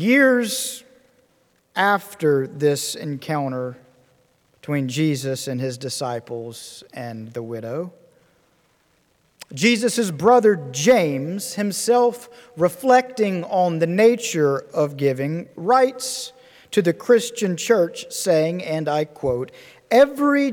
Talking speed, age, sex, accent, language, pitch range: 95 wpm, 50-69, male, American, English, 140-230 Hz